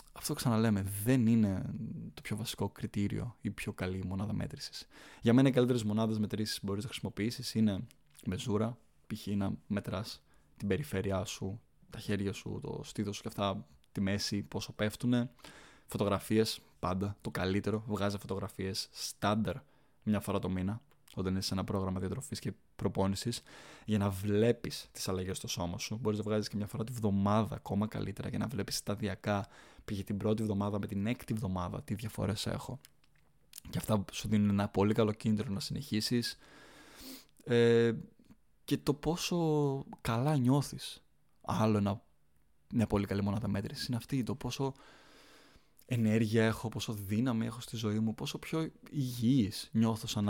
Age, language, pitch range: 20-39, Greek, 100-120 Hz